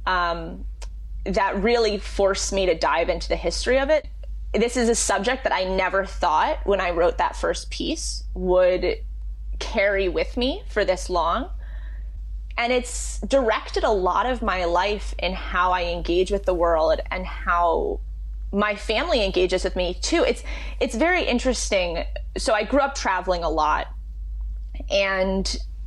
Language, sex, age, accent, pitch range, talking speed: English, female, 20-39, American, 170-215 Hz, 160 wpm